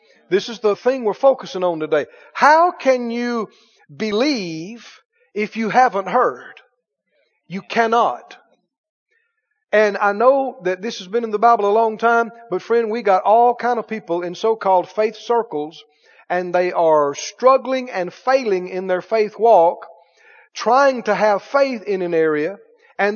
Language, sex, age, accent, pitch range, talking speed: English, male, 50-69, American, 205-315 Hz, 160 wpm